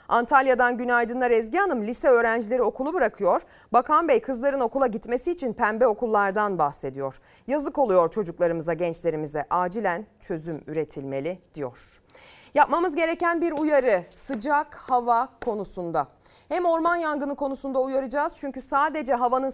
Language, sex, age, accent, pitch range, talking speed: Turkish, female, 30-49, native, 235-315 Hz, 125 wpm